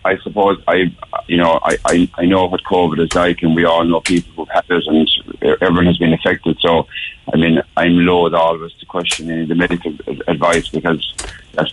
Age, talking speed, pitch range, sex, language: 50-69, 210 wpm, 80-85 Hz, male, English